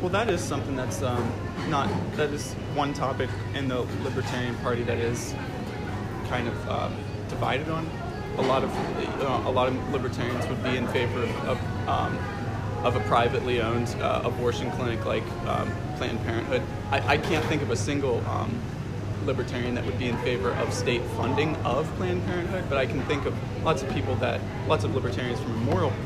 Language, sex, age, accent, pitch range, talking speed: English, male, 20-39, American, 105-125 Hz, 190 wpm